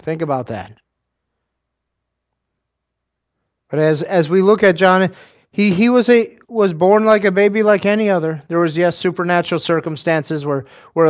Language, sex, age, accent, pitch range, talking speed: English, male, 30-49, American, 145-175 Hz, 155 wpm